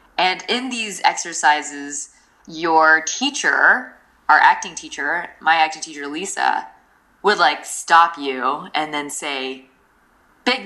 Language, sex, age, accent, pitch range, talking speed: English, female, 20-39, American, 155-200 Hz, 120 wpm